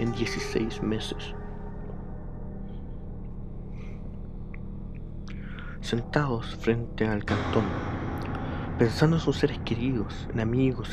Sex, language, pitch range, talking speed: male, Spanish, 110-130 Hz, 75 wpm